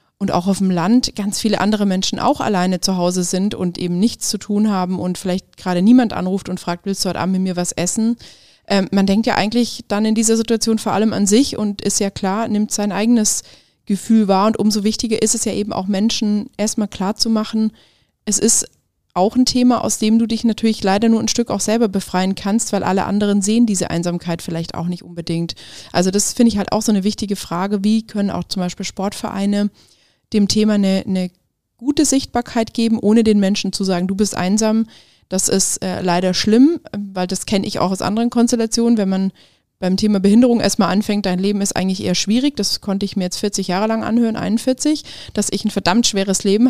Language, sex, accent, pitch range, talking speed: German, female, German, 190-225 Hz, 220 wpm